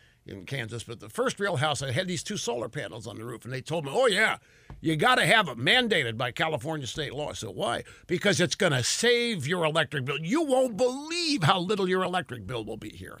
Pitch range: 120-200 Hz